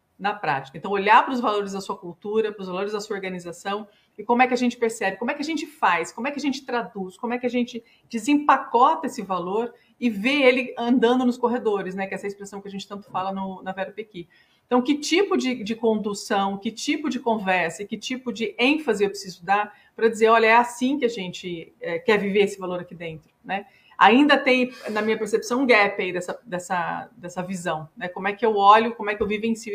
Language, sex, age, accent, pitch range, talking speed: Portuguese, female, 40-59, Brazilian, 195-245 Hz, 240 wpm